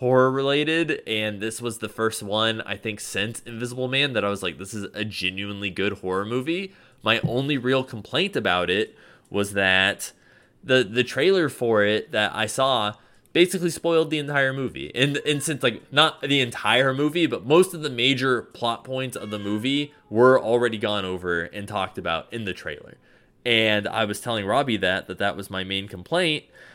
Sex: male